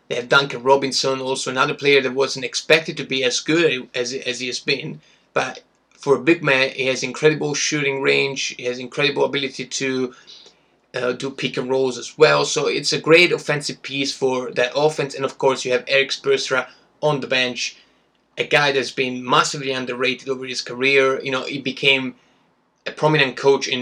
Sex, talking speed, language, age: male, 195 wpm, Italian, 20-39